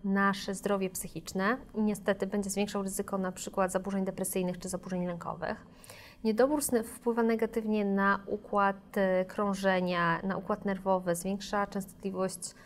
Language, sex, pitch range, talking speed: Polish, female, 195-230 Hz, 120 wpm